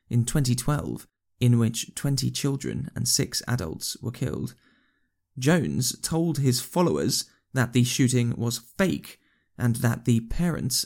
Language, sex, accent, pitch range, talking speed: English, male, British, 115-130 Hz, 135 wpm